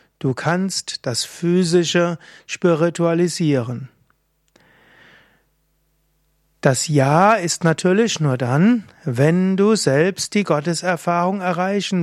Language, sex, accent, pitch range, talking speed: German, male, German, 155-190 Hz, 85 wpm